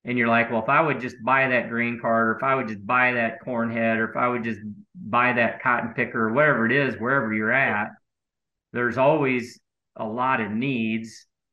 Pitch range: 115-130 Hz